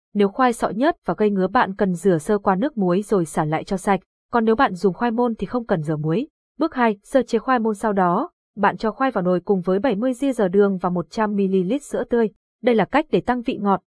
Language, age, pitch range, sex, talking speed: Vietnamese, 20-39, 185-240 Hz, female, 250 wpm